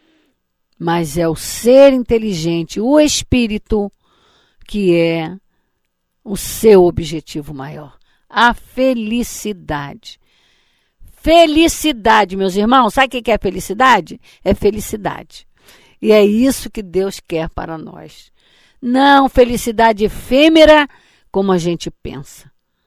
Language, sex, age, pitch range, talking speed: Portuguese, female, 60-79, 170-265 Hz, 105 wpm